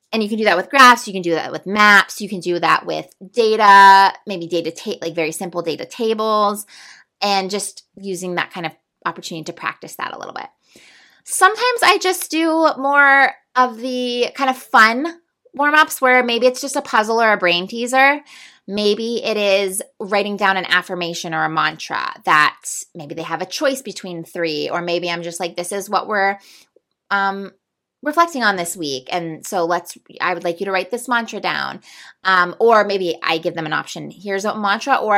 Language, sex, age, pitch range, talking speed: English, female, 20-39, 180-255 Hz, 200 wpm